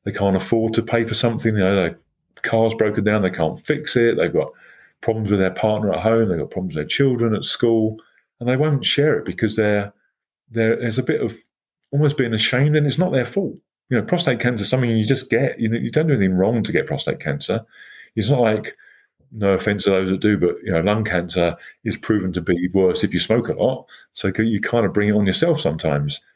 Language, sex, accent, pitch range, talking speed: English, male, British, 100-120 Hz, 240 wpm